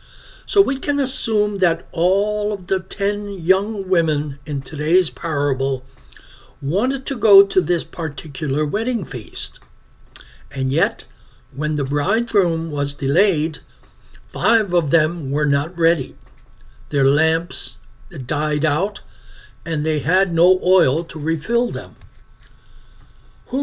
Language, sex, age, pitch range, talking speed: English, male, 60-79, 135-185 Hz, 120 wpm